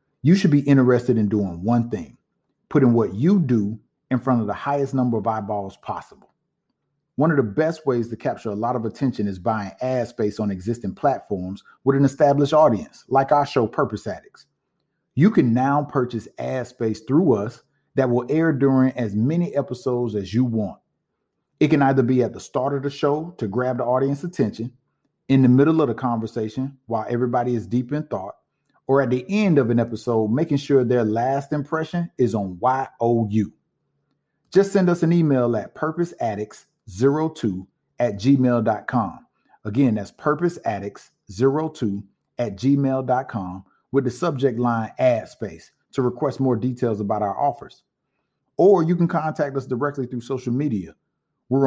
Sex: male